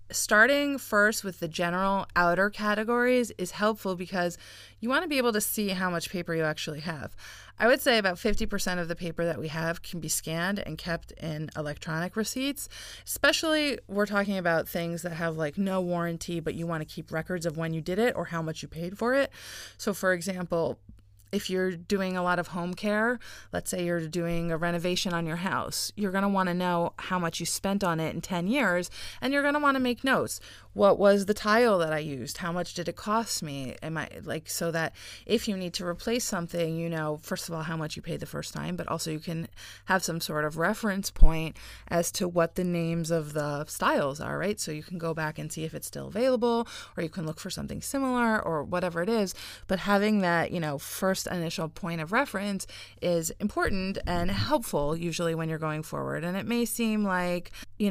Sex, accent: female, American